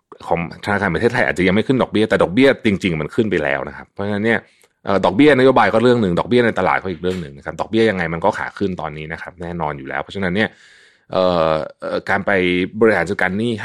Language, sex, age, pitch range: Thai, male, 30-49, 80-110 Hz